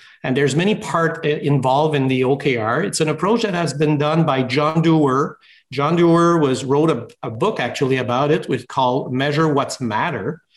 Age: 50-69